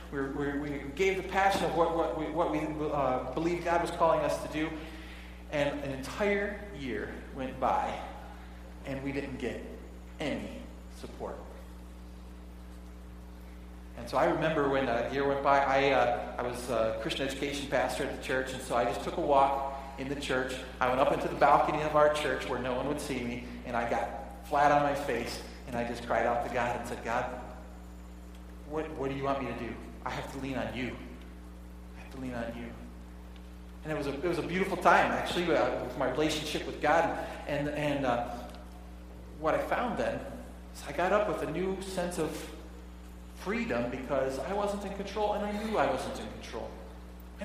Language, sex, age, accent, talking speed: English, male, 40-59, American, 200 wpm